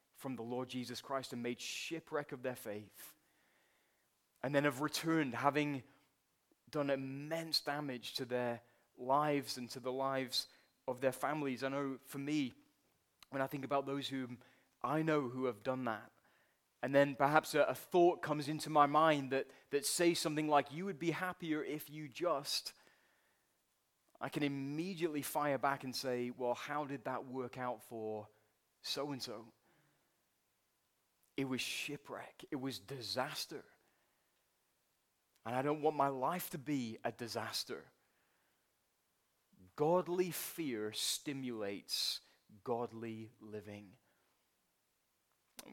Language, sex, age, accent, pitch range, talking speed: English, male, 30-49, British, 125-145 Hz, 135 wpm